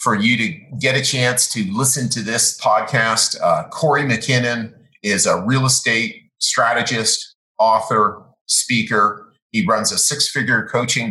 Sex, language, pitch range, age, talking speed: male, English, 105-130 Hz, 40-59, 140 wpm